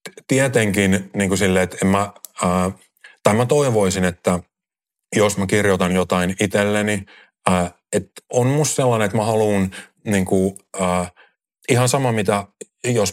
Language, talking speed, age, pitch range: Finnish, 135 wpm, 30-49, 90-110 Hz